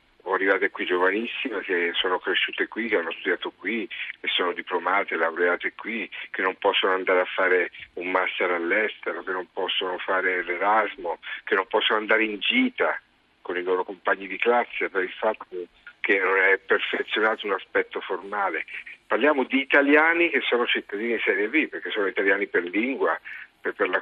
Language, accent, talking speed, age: Italian, native, 170 wpm, 50-69